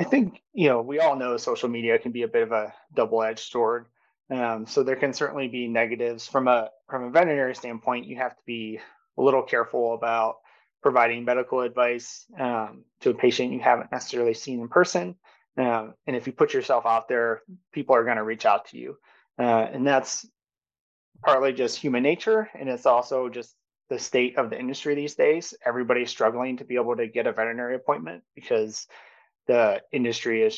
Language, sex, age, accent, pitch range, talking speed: English, male, 30-49, American, 115-135 Hz, 195 wpm